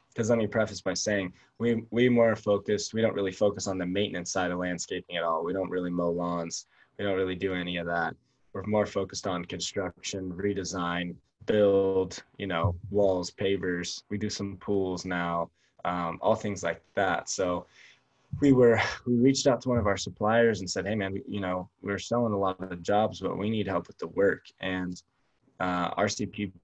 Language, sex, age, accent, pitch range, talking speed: English, male, 20-39, American, 90-105 Hz, 200 wpm